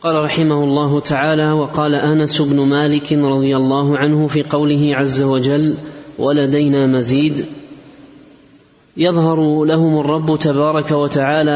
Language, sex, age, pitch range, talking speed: Arabic, male, 20-39, 145-155 Hz, 115 wpm